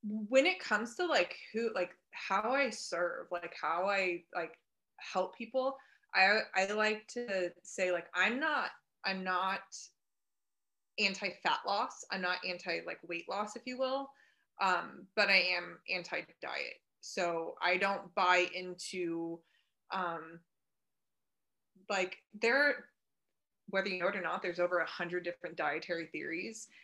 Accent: American